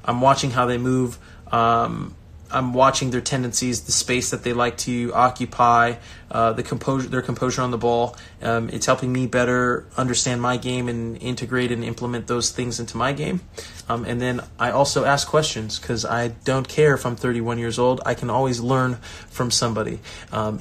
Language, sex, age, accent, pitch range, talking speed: English, male, 20-39, American, 115-140 Hz, 190 wpm